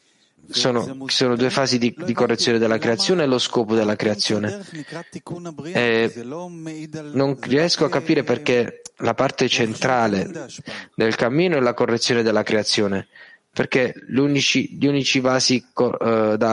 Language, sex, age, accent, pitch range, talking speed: Italian, male, 20-39, native, 110-135 Hz, 140 wpm